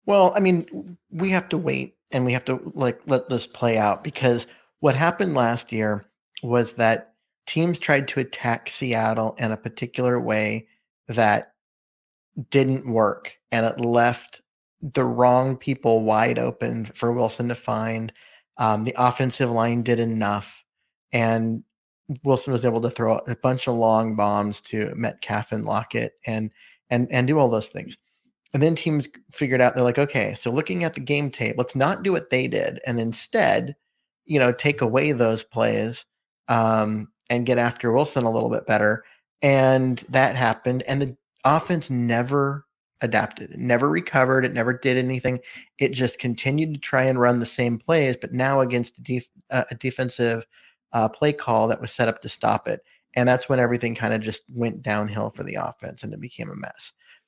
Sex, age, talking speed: male, 30-49, 175 wpm